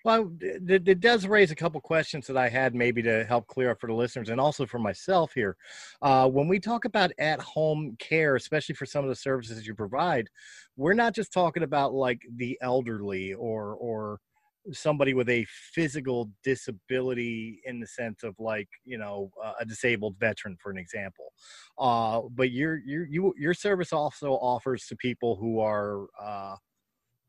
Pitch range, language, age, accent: 110-135 Hz, English, 30-49, American